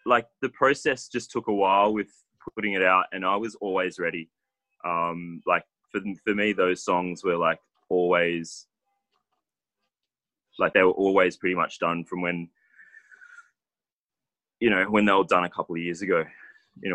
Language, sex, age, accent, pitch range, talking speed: English, male, 20-39, Australian, 85-95 Hz, 165 wpm